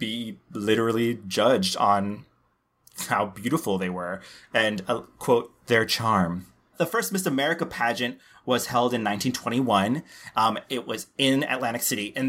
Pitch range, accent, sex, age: 115-140 Hz, American, male, 30-49